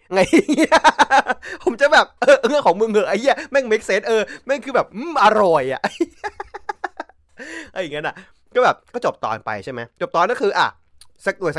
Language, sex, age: Thai, male, 20-39